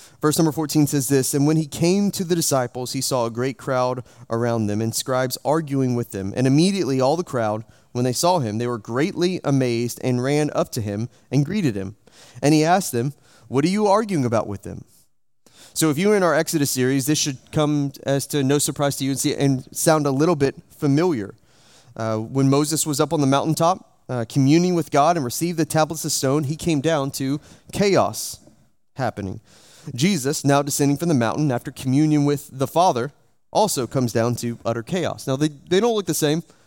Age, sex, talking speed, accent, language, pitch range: 30-49, male, 210 wpm, American, English, 125-155 Hz